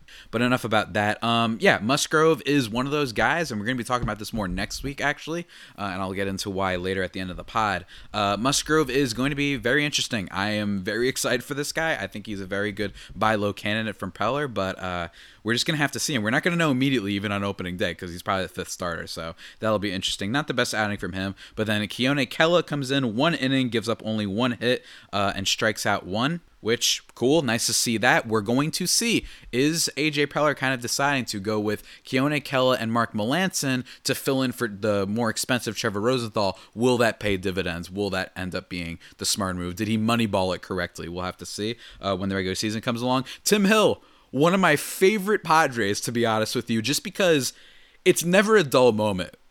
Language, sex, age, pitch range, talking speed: English, male, 20-39, 100-135 Hz, 240 wpm